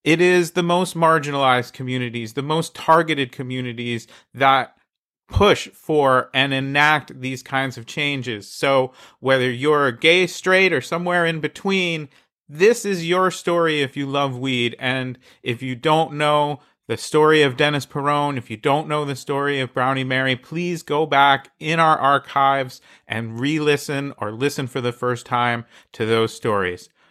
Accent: American